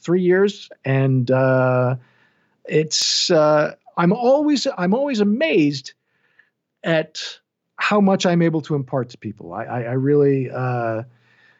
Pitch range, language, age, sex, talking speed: 135-195 Hz, English, 50-69, male, 130 wpm